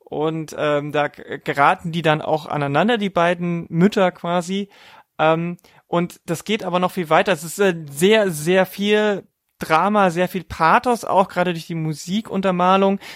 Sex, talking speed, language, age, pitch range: male, 160 wpm, German, 30-49, 160-195 Hz